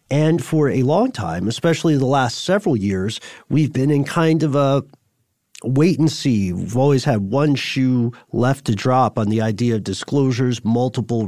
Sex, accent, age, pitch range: male, American, 40-59, 110-140 Hz